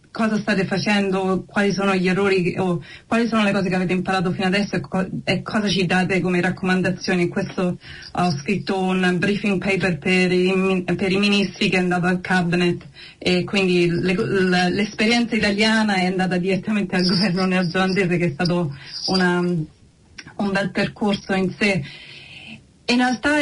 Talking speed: 165 wpm